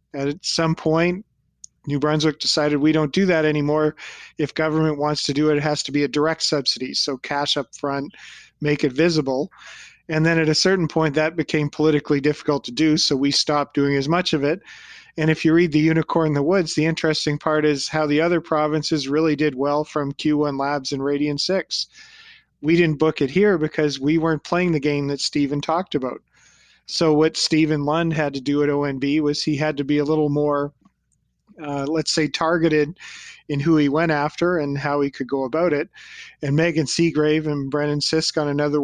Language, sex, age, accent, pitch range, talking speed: English, male, 40-59, American, 145-160 Hz, 205 wpm